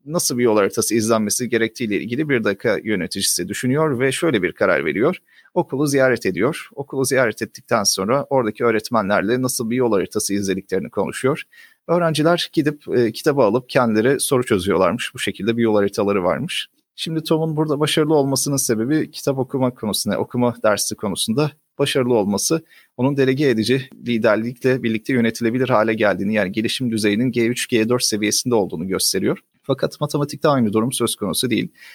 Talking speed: 150 wpm